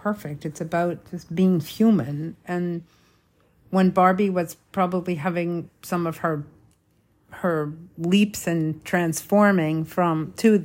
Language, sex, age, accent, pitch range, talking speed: English, female, 50-69, American, 155-180 Hz, 120 wpm